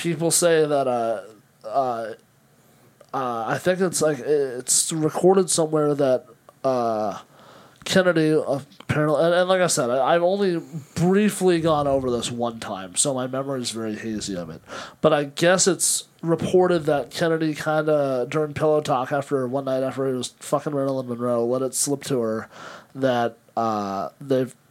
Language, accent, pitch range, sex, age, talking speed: English, American, 110-150 Hz, male, 30-49, 165 wpm